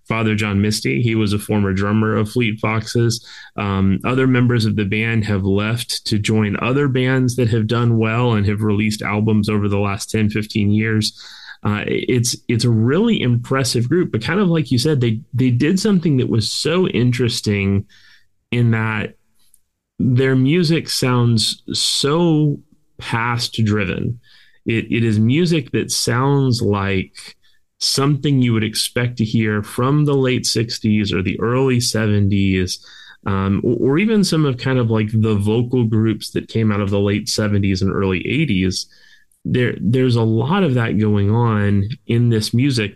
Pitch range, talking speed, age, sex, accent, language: 105-125 Hz, 165 wpm, 30-49, male, American, English